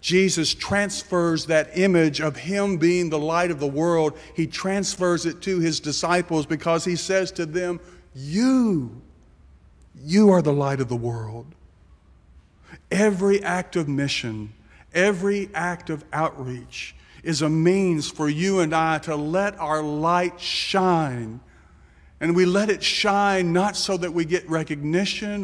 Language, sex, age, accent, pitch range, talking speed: English, male, 50-69, American, 150-190 Hz, 145 wpm